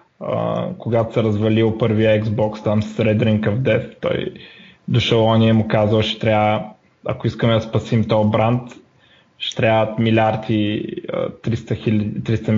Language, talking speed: Bulgarian, 140 wpm